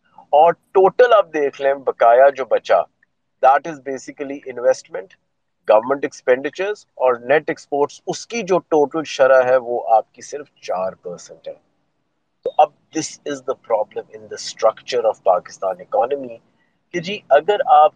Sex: male